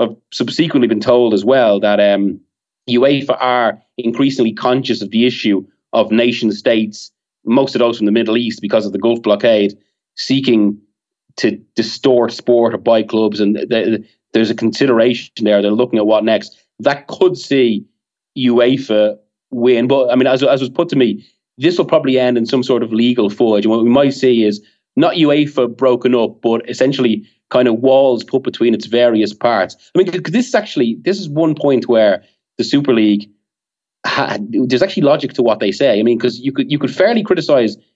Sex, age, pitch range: male, 30-49, 110-150 Hz